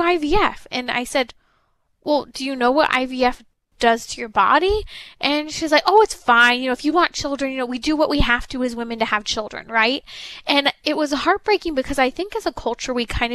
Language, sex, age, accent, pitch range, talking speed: English, female, 20-39, American, 230-300 Hz, 235 wpm